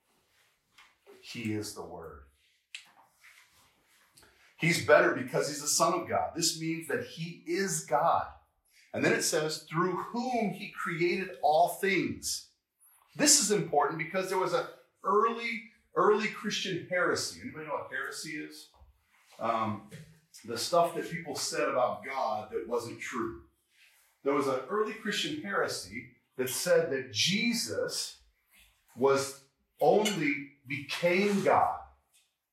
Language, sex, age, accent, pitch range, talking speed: English, male, 40-59, American, 130-210 Hz, 125 wpm